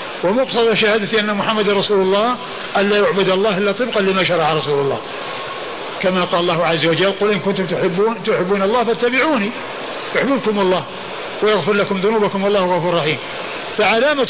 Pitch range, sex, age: 195-245 Hz, male, 50-69